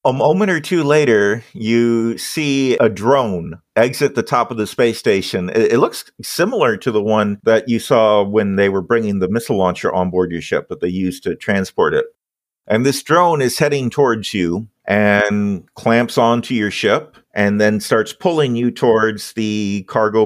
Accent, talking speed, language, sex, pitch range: American, 185 wpm, English, male, 100-120 Hz